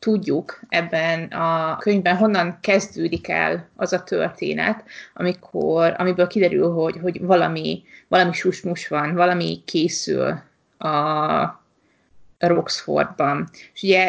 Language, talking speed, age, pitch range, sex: Hungarian, 100 wpm, 20-39, 165-200 Hz, female